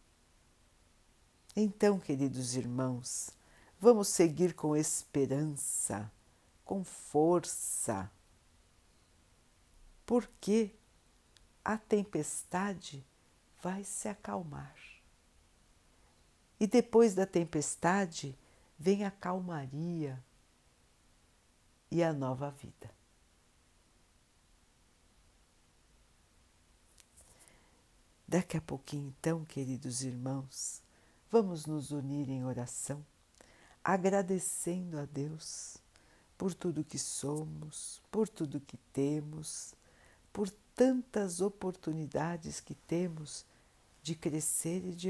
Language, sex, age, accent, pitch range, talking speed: Portuguese, female, 60-79, Brazilian, 110-185 Hz, 75 wpm